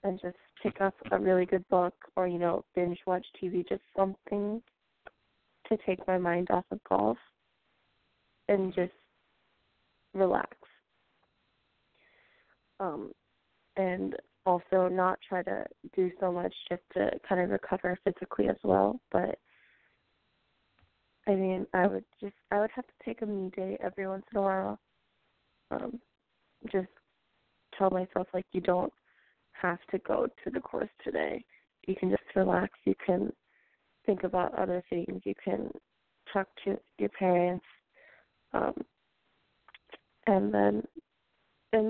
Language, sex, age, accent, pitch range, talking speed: English, female, 20-39, American, 180-205 Hz, 135 wpm